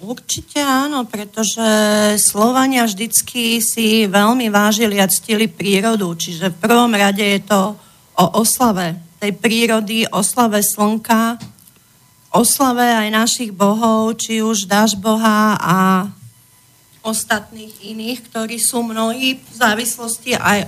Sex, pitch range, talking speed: female, 205-235 Hz, 115 wpm